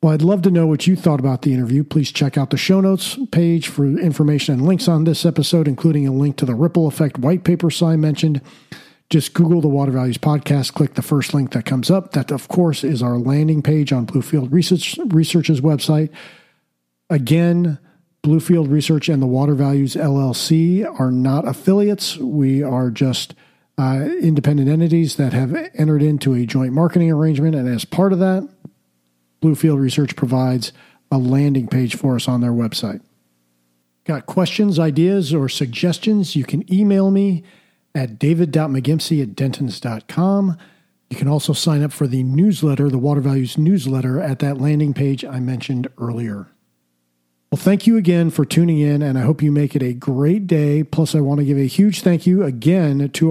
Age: 50-69